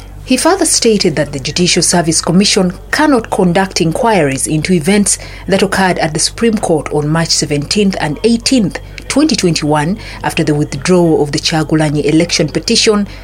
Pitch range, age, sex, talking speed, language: 155-200 Hz, 40-59, female, 150 wpm, English